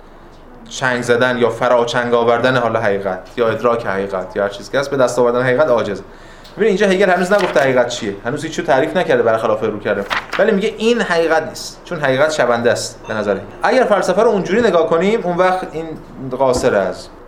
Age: 30-49